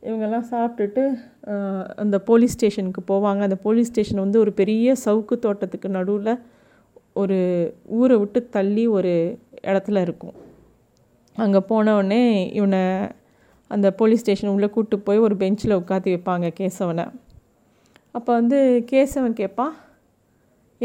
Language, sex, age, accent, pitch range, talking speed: Tamil, female, 30-49, native, 195-250 Hz, 115 wpm